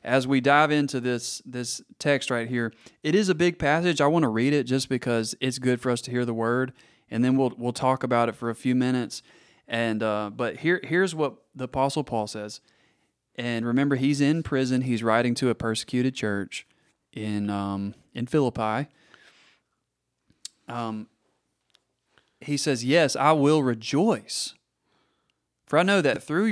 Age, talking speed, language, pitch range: 30-49, 175 wpm, English, 115-150 Hz